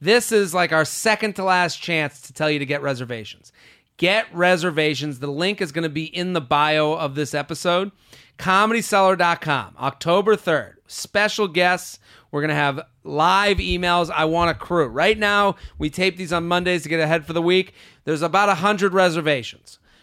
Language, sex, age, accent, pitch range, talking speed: English, male, 30-49, American, 140-180 Hz, 180 wpm